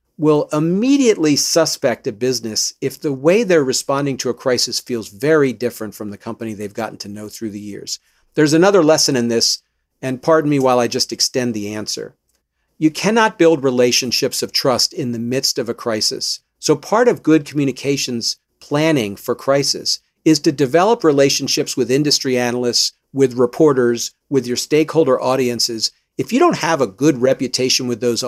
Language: English